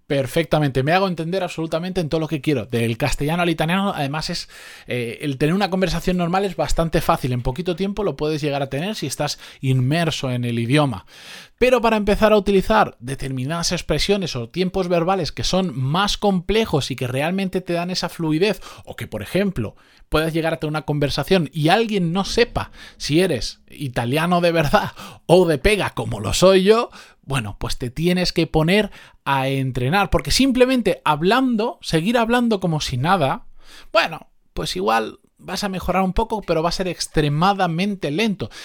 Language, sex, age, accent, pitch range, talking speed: Spanish, male, 20-39, Spanish, 145-195 Hz, 180 wpm